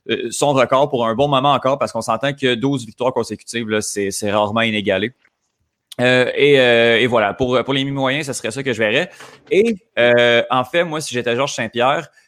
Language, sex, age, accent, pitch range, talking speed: French, male, 30-49, Canadian, 115-145 Hz, 205 wpm